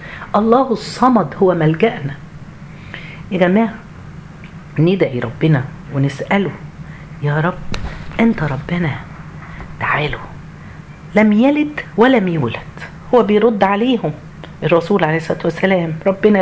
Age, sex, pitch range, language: 50-69, female, 155-200 Hz, Arabic